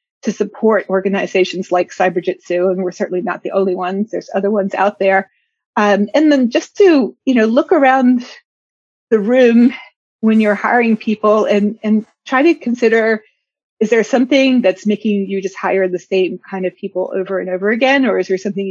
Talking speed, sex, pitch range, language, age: 185 wpm, female, 190-230 Hz, English, 30-49